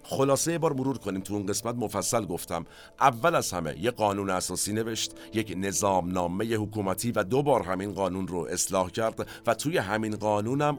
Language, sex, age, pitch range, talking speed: Persian, male, 50-69, 95-120 Hz, 185 wpm